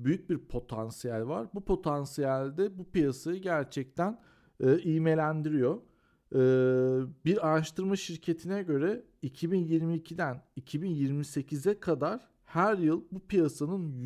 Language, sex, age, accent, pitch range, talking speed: Turkish, male, 40-59, native, 135-180 Hz, 100 wpm